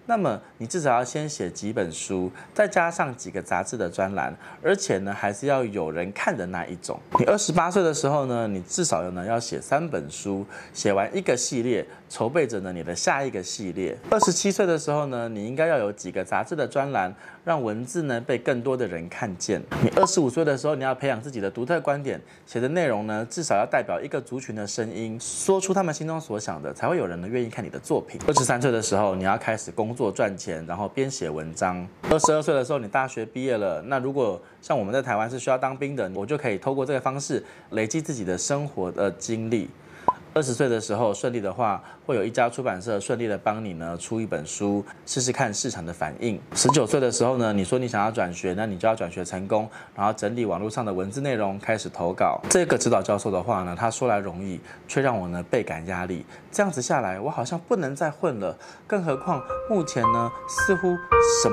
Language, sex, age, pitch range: Chinese, male, 20-39, 100-150 Hz